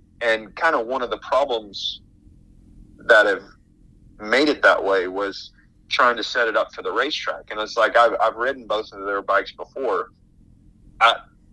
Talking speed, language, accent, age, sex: 175 wpm, English, American, 30-49, male